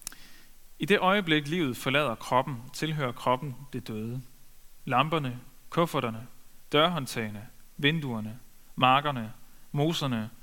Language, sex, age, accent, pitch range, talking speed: Danish, male, 30-49, native, 125-155 Hz, 90 wpm